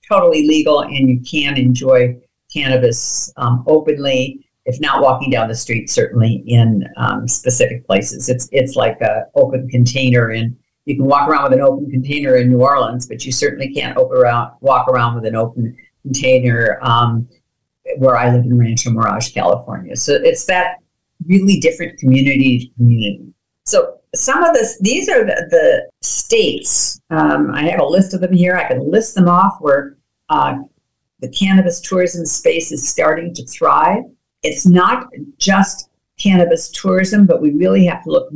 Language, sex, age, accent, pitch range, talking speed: English, female, 50-69, American, 125-180 Hz, 170 wpm